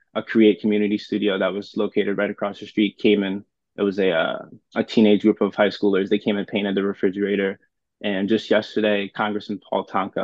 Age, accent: 20-39, American